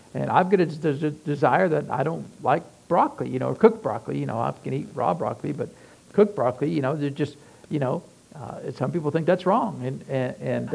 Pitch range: 150-175 Hz